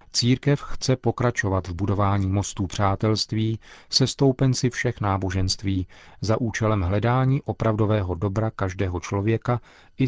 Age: 40-59